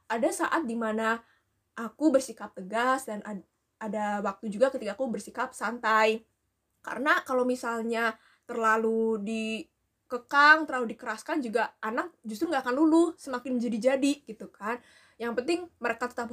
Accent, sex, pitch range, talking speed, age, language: native, female, 225-290 Hz, 130 wpm, 20-39, Indonesian